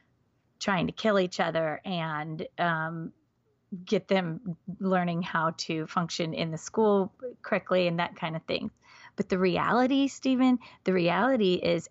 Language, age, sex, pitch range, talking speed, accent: English, 30-49, female, 175-220 Hz, 145 wpm, American